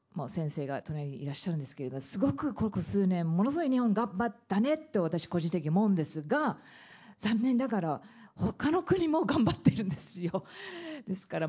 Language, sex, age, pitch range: Japanese, female, 40-59, 150-220 Hz